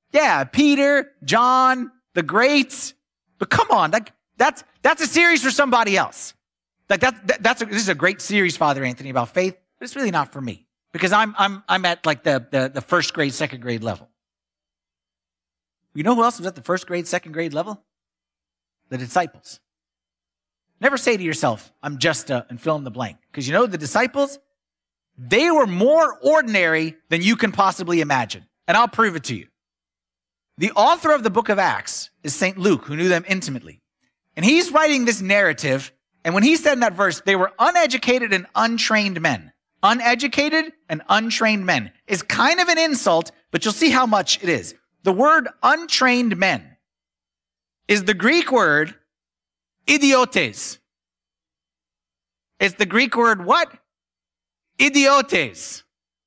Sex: male